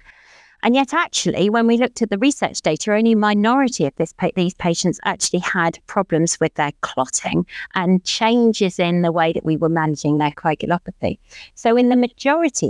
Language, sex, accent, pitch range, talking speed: English, female, British, 165-225 Hz, 175 wpm